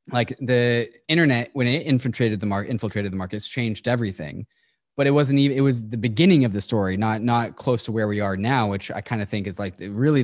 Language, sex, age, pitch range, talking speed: English, male, 20-39, 105-125 Hz, 240 wpm